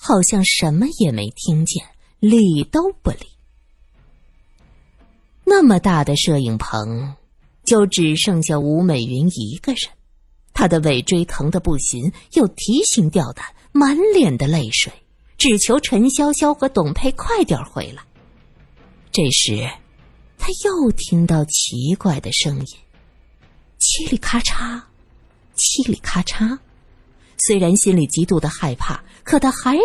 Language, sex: Chinese, female